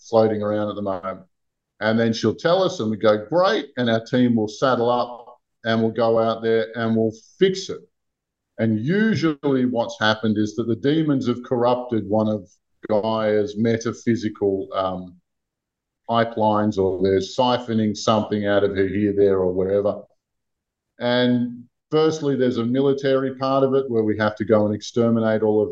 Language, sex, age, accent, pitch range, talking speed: English, male, 50-69, Australian, 105-125 Hz, 170 wpm